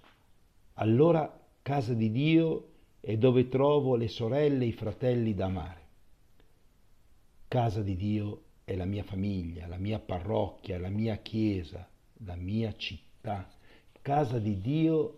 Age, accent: 60-79, native